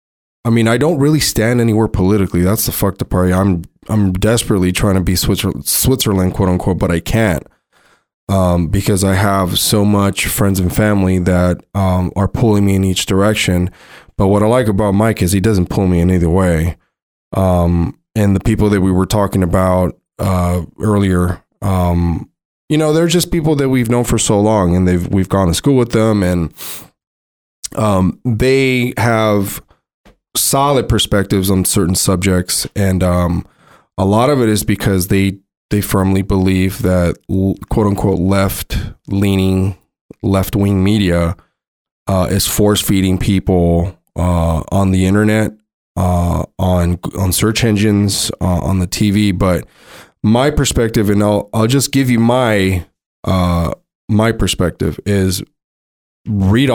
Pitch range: 90-110 Hz